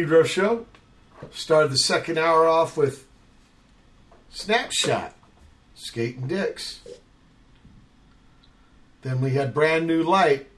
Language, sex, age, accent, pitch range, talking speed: English, male, 50-69, American, 115-165 Hz, 90 wpm